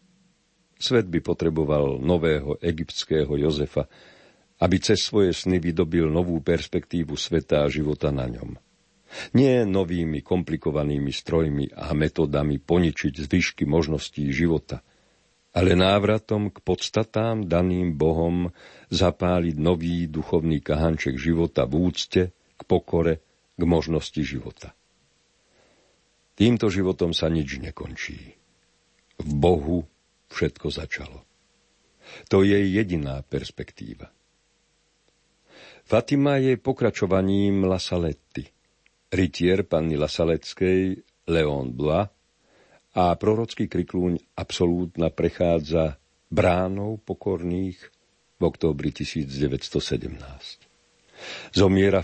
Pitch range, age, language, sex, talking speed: 75-95 Hz, 50-69, Slovak, male, 90 wpm